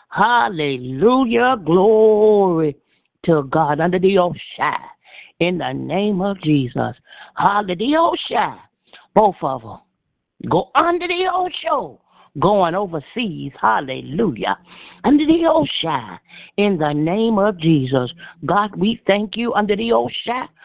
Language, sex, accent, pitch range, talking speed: English, female, American, 160-225 Hz, 115 wpm